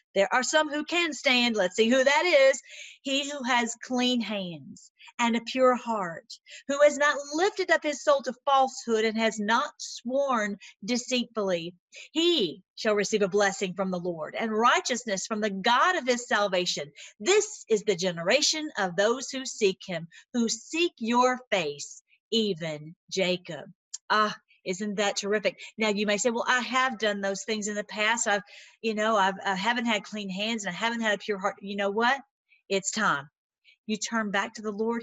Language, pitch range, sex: English, 200-255 Hz, female